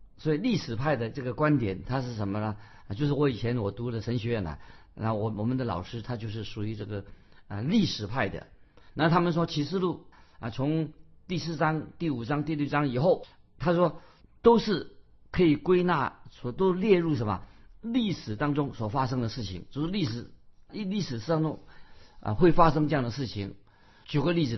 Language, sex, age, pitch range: Chinese, male, 50-69, 110-150 Hz